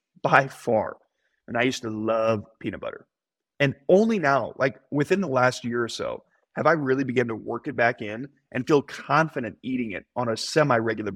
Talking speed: 195 wpm